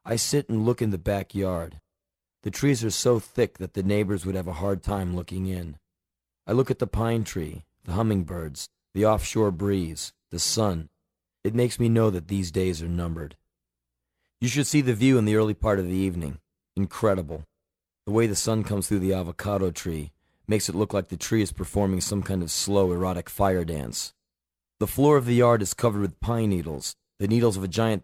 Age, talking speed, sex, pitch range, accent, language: 40-59, 205 wpm, male, 85-105 Hz, American, English